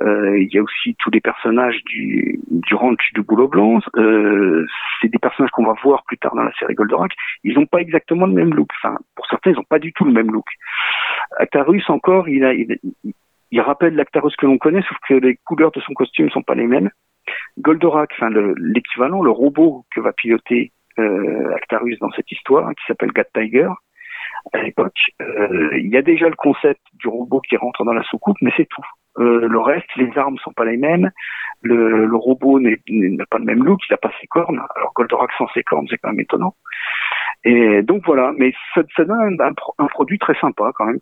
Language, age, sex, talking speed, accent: French, 50-69, male, 220 wpm, French